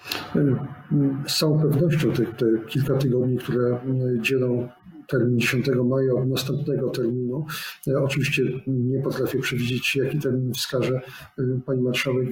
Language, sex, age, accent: Polish, male, 50-69, native